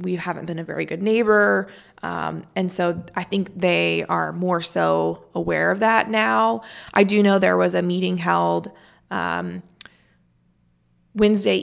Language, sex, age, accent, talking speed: English, female, 20-39, American, 155 wpm